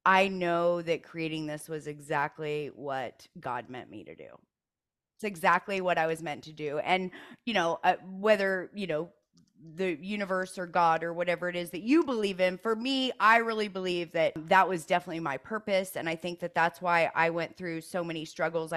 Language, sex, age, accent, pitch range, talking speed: English, female, 20-39, American, 160-195 Hz, 200 wpm